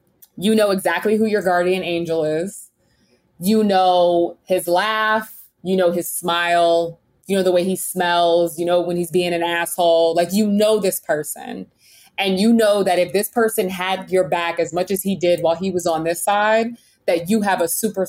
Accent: American